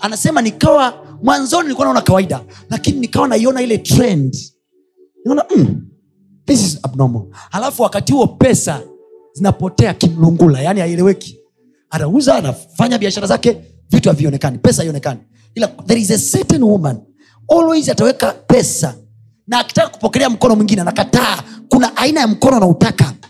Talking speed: 115 wpm